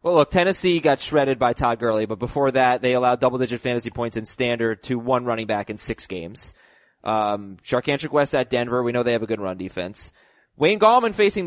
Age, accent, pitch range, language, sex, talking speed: 20-39, American, 125-165 Hz, English, male, 215 wpm